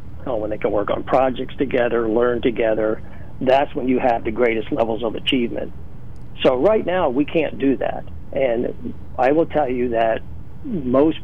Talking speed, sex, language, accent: 170 wpm, male, English, American